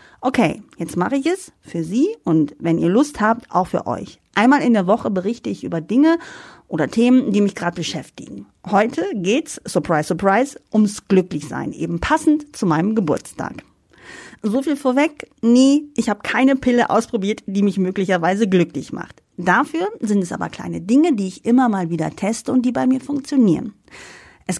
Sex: female